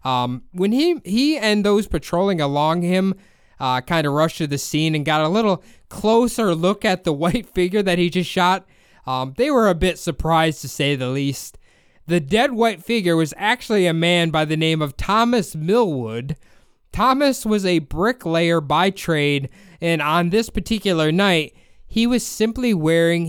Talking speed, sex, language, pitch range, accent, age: 180 wpm, male, English, 160-210 Hz, American, 20-39